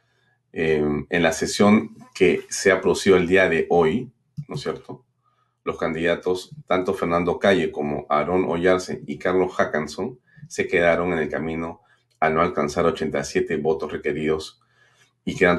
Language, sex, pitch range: Spanish, male, 80-125 Hz